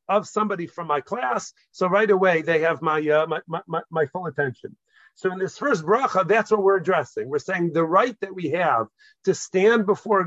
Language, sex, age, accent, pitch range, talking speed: English, male, 50-69, American, 165-210 Hz, 215 wpm